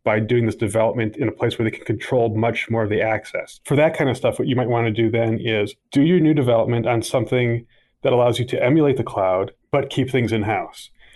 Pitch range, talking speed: 110-125 Hz, 245 wpm